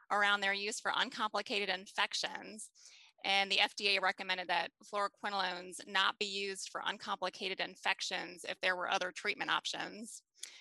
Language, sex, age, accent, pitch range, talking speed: English, female, 20-39, American, 190-235 Hz, 135 wpm